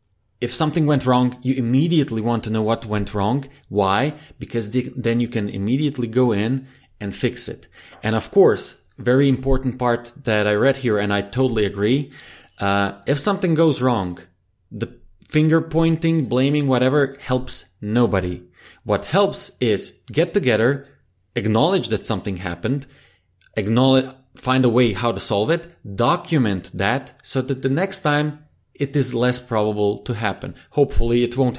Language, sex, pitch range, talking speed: English, male, 105-140 Hz, 160 wpm